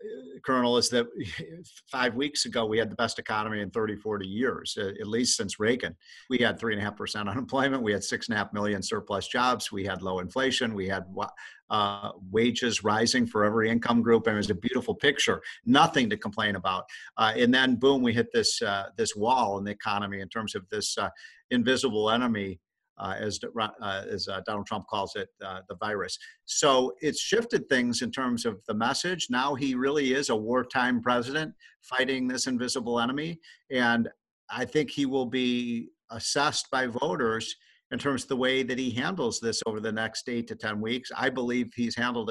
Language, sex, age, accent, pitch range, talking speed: English, male, 50-69, American, 110-130 Hz, 195 wpm